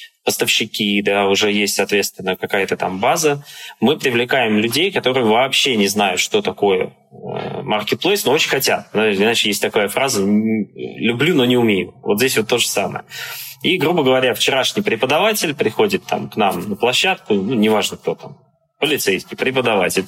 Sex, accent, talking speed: male, native, 155 wpm